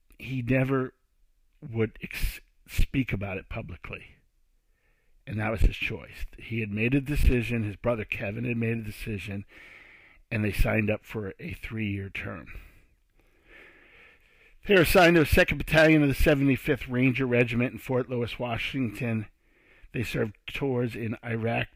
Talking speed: 145 wpm